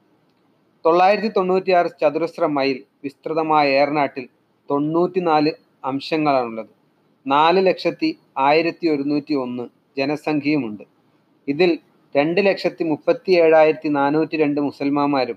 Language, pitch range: Malayalam, 145-175 Hz